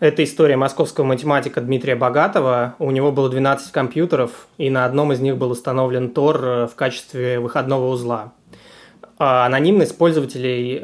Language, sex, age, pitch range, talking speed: Russian, male, 20-39, 125-150 Hz, 140 wpm